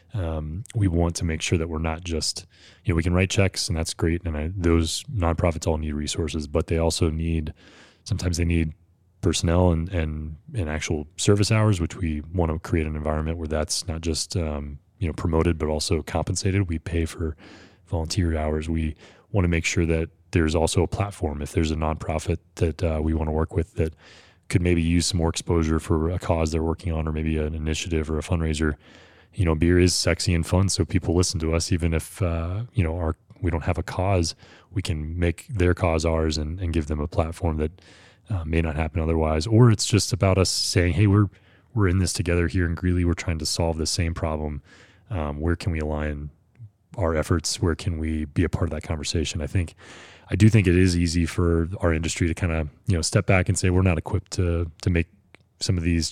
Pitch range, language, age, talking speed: 80-95 Hz, English, 20-39, 225 wpm